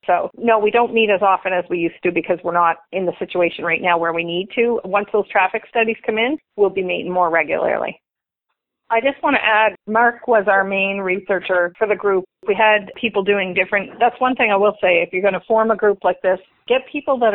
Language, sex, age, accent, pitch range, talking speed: English, female, 40-59, American, 175-205 Hz, 240 wpm